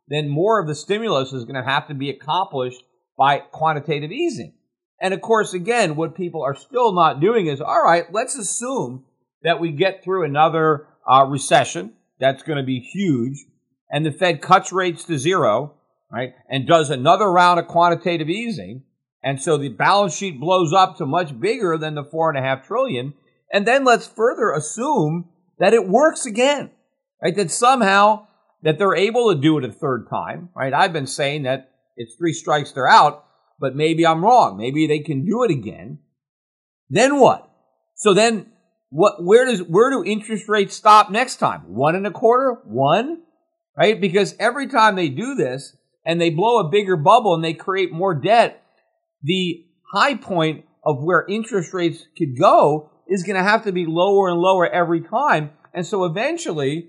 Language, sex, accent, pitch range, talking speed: English, male, American, 150-210 Hz, 180 wpm